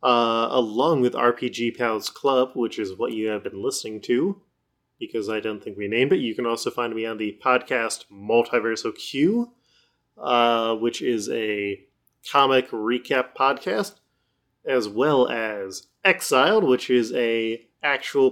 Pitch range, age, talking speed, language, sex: 115-155 Hz, 20-39, 150 wpm, English, male